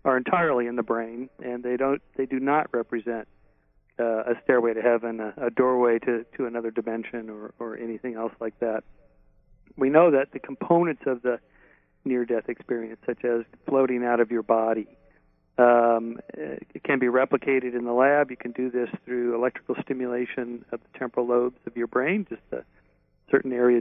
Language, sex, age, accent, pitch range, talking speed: English, male, 40-59, American, 120-135 Hz, 180 wpm